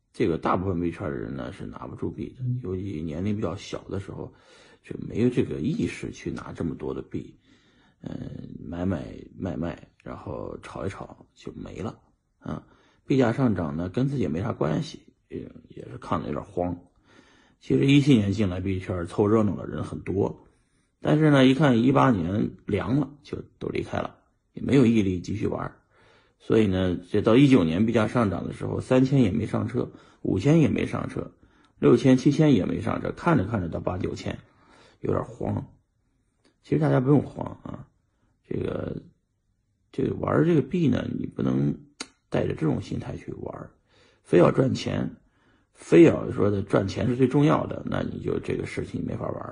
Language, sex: Chinese, male